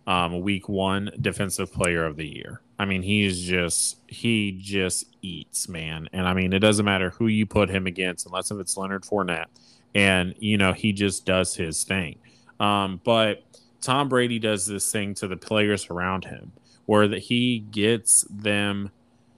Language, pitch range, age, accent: English, 95-120 Hz, 20-39, American